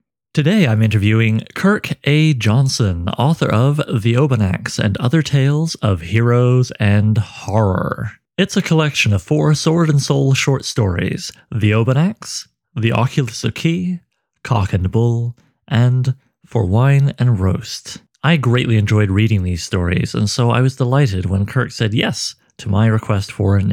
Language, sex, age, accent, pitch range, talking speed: English, male, 30-49, American, 105-135 Hz, 155 wpm